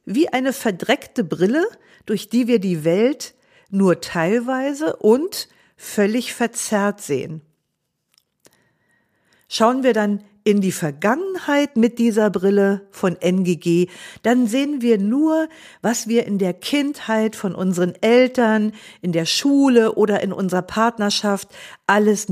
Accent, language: German, German